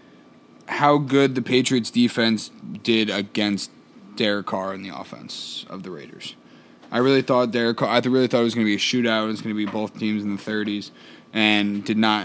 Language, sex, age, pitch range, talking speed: English, male, 20-39, 110-130 Hz, 200 wpm